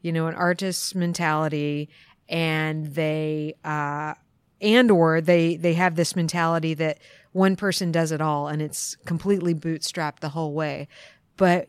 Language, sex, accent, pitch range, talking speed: English, female, American, 165-190 Hz, 150 wpm